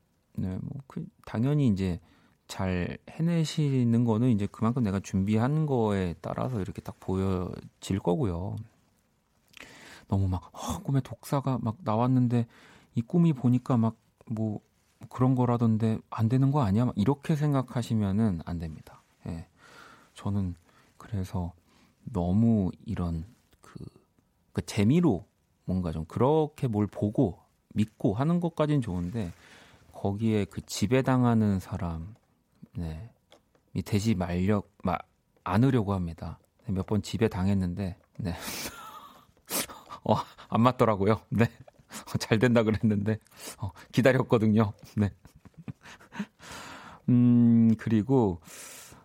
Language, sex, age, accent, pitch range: Korean, male, 40-59, native, 95-130 Hz